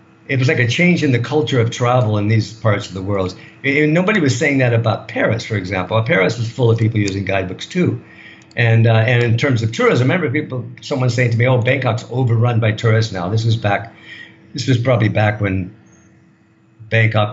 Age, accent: 50-69, American